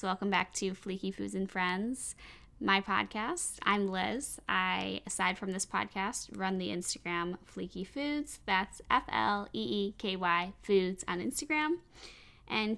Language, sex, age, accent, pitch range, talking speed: English, female, 10-29, American, 180-205 Hz, 125 wpm